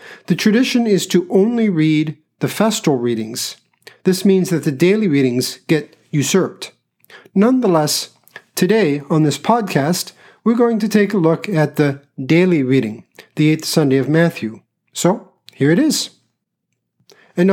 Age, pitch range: 50-69, 150-195 Hz